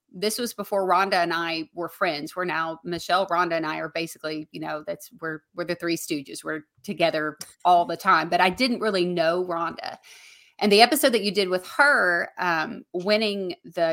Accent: American